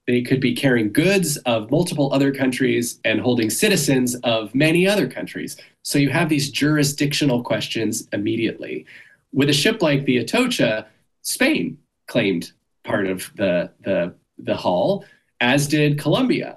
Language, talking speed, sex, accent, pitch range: English, 145 wpm, male, American, 125-155 Hz